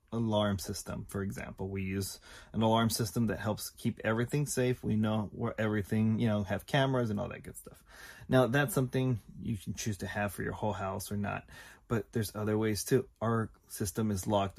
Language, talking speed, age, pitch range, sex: English, 205 wpm, 20-39, 100-115 Hz, male